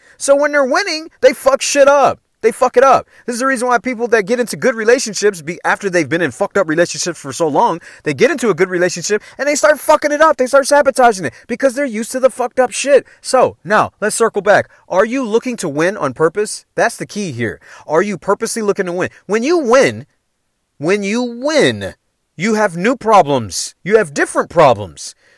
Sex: male